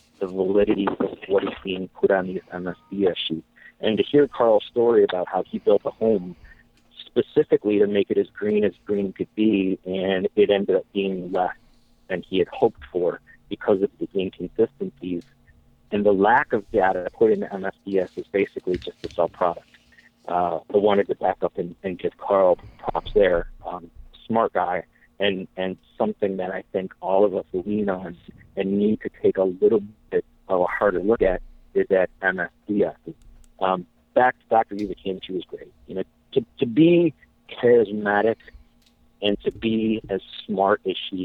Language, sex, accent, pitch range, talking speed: English, male, American, 95-115 Hz, 180 wpm